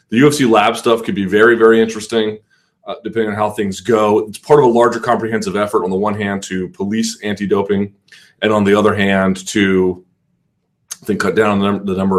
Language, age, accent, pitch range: English, 30-49, American, 95-115 Hz